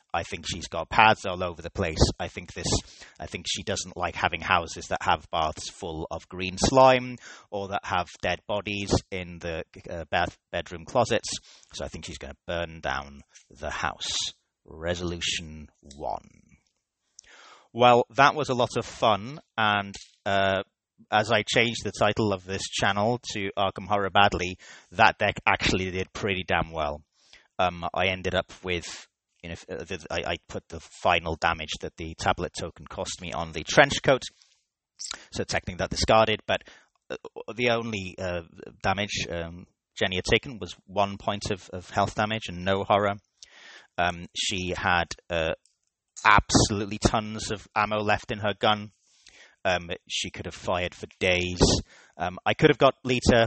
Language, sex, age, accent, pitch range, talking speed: English, male, 30-49, British, 90-105 Hz, 155 wpm